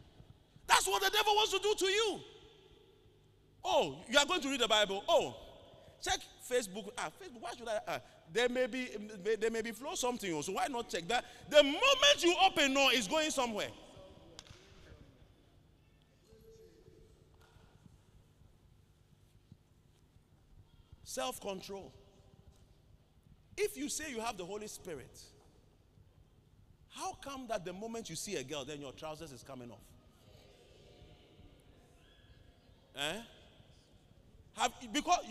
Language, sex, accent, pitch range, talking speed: English, male, Nigerian, 210-345 Hz, 130 wpm